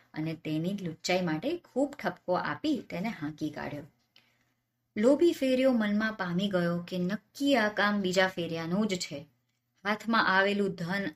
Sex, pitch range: male, 155-205 Hz